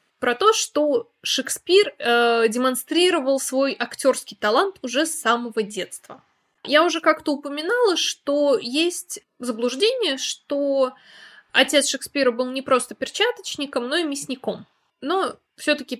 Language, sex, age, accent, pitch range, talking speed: Russian, female, 20-39, native, 230-330 Hz, 120 wpm